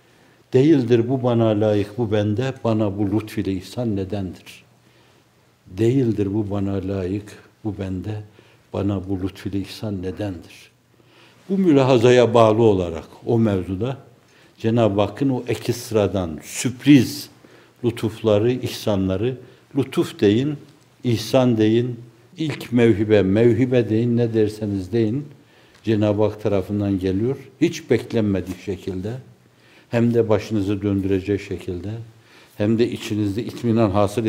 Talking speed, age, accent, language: 110 wpm, 60-79, native, Turkish